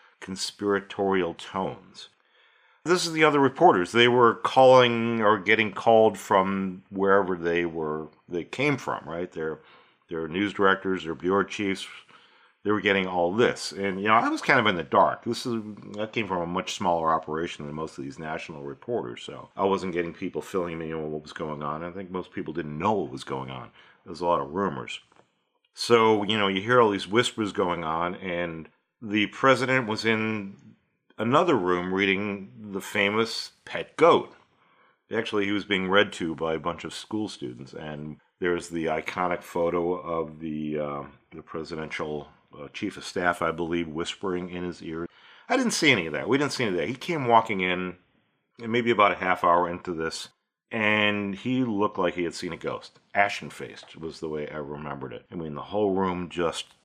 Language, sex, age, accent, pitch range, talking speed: English, male, 50-69, American, 85-105 Hz, 195 wpm